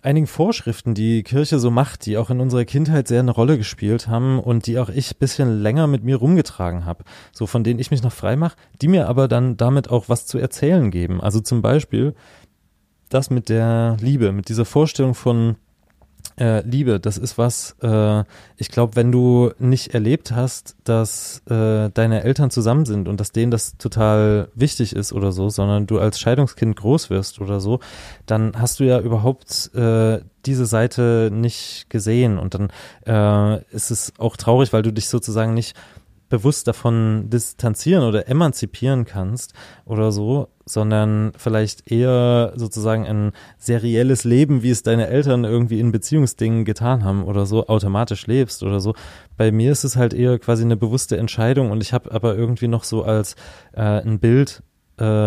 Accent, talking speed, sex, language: German, 180 wpm, male, German